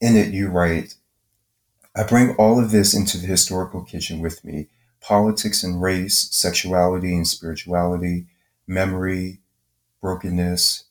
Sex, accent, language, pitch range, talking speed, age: male, American, English, 85-95 Hz, 125 wpm, 30-49